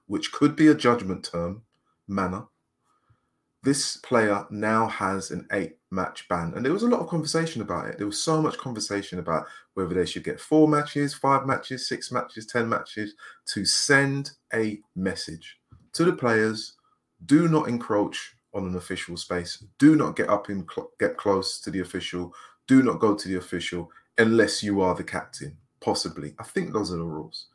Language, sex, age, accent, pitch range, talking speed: English, male, 30-49, British, 90-130 Hz, 180 wpm